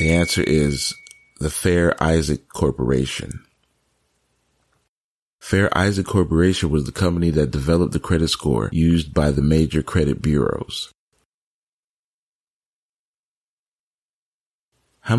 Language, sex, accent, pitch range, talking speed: English, male, American, 80-115 Hz, 100 wpm